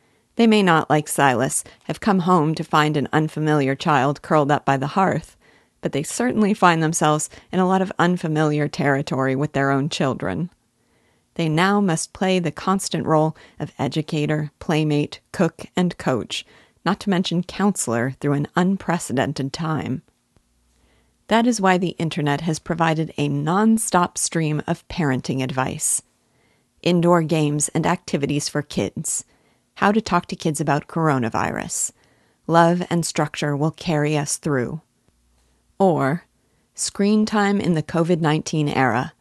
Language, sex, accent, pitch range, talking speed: English, female, American, 145-180 Hz, 145 wpm